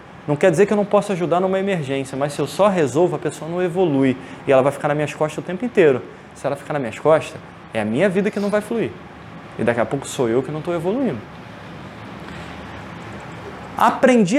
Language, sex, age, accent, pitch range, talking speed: Portuguese, male, 20-39, Brazilian, 155-220 Hz, 225 wpm